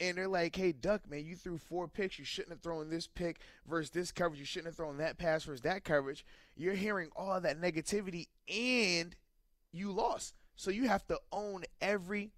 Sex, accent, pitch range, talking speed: male, American, 135-170 Hz, 205 wpm